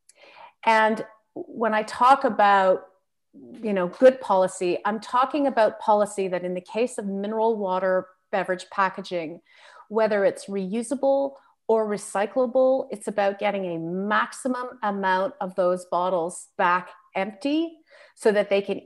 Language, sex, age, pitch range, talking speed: English, female, 30-49, 185-240 Hz, 135 wpm